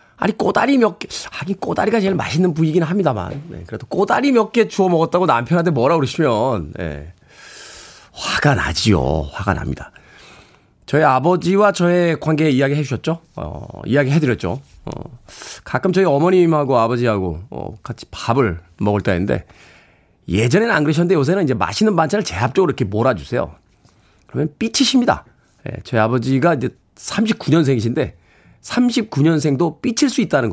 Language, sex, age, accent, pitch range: Korean, male, 40-59, native, 115-175 Hz